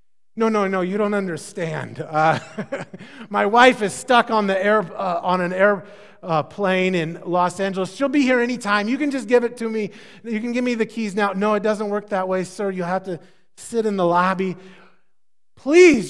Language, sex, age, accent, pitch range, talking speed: English, male, 30-49, American, 180-250 Hz, 200 wpm